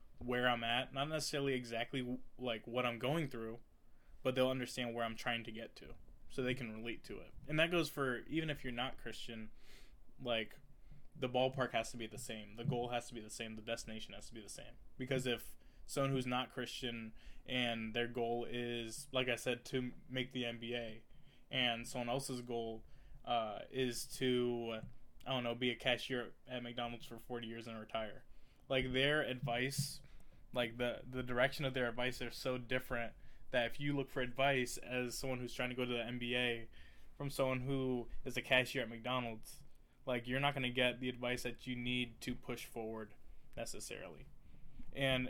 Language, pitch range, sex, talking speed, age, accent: English, 120-130 Hz, male, 195 wpm, 20-39, American